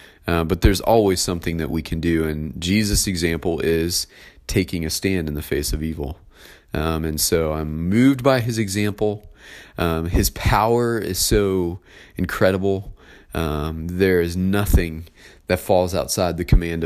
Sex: male